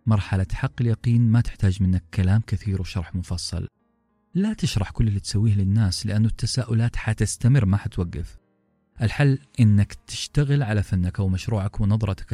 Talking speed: 135 wpm